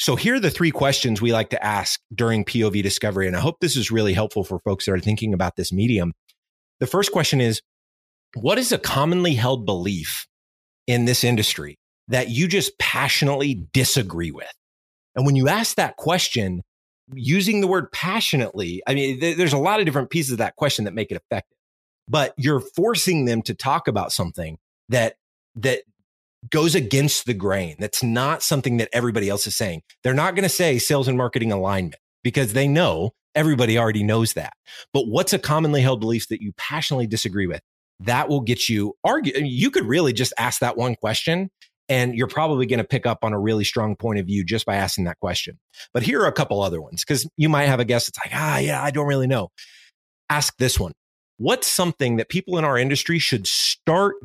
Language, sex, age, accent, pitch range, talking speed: English, male, 30-49, American, 105-145 Hz, 205 wpm